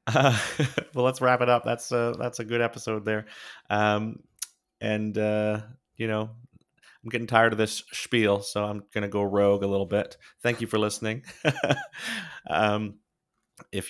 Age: 30-49